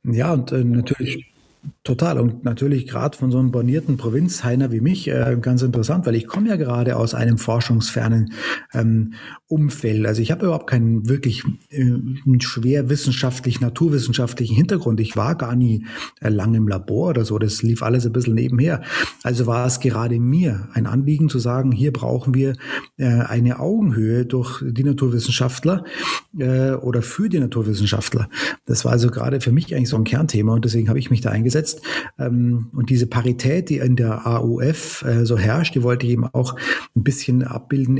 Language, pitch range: German, 115-135 Hz